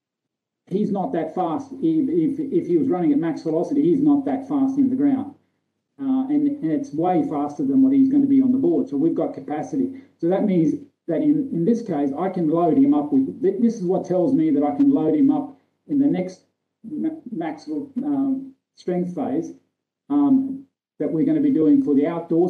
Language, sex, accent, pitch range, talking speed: English, male, Australian, 185-285 Hz, 210 wpm